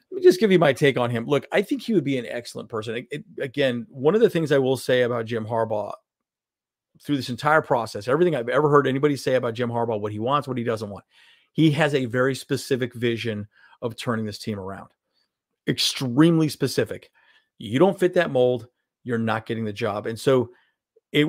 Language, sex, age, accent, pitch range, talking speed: English, male, 40-59, American, 115-150 Hz, 210 wpm